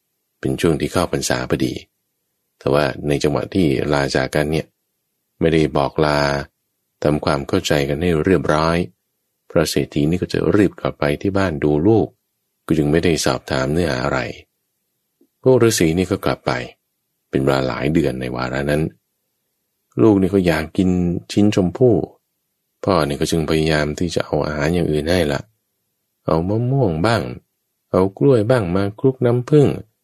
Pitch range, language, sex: 75-100 Hz, English, male